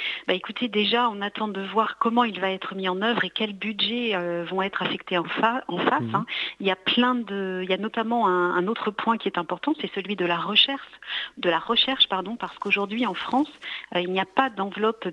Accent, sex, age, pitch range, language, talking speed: French, female, 50-69, 180-225 Hz, French, 240 wpm